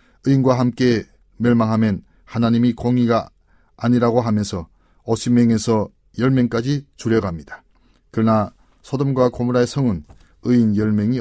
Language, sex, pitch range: Korean, male, 105-125 Hz